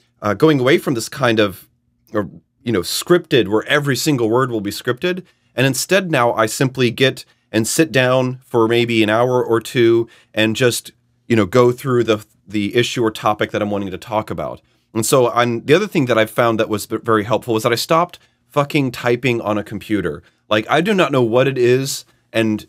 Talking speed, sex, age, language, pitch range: 215 wpm, male, 30-49, English, 115-155 Hz